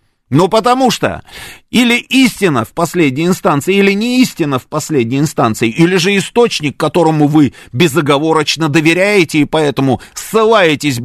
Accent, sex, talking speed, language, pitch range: native, male, 130 wpm, Russian, 130-205 Hz